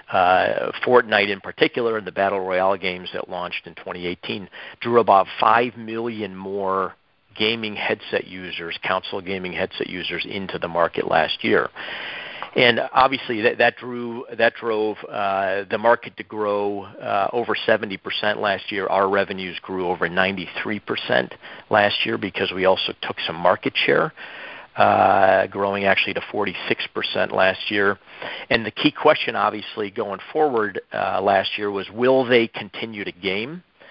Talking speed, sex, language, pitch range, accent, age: 145 wpm, male, English, 95-115 Hz, American, 50-69